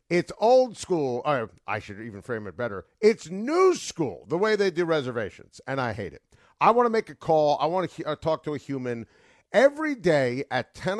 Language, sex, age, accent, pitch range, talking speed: English, male, 50-69, American, 125-195 Hz, 205 wpm